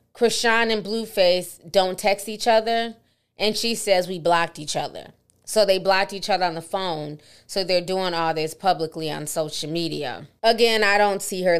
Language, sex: English, female